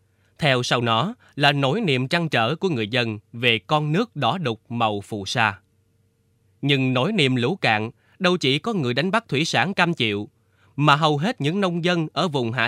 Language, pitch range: Vietnamese, 110-155 Hz